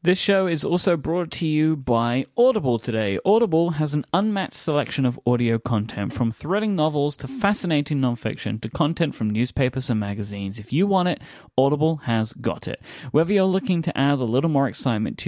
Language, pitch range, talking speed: English, 115-150 Hz, 190 wpm